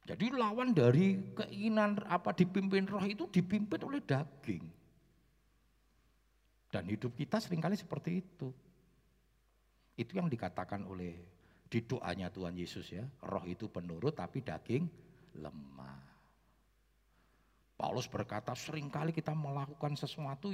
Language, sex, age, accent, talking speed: Indonesian, male, 50-69, native, 110 wpm